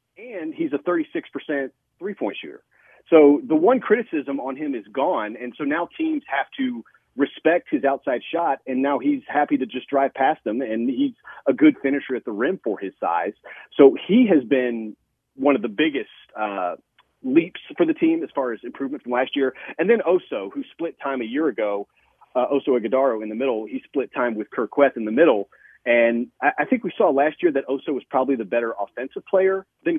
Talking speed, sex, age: 210 wpm, male, 40-59